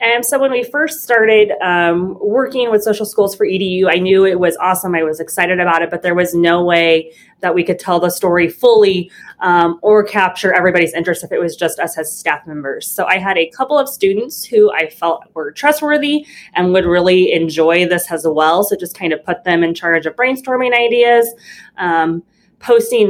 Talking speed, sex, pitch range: 210 wpm, female, 165-205 Hz